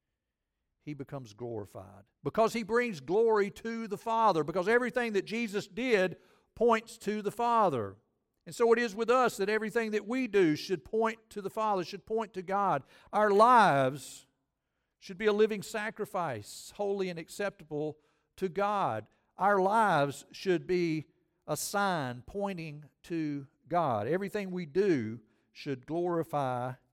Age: 50-69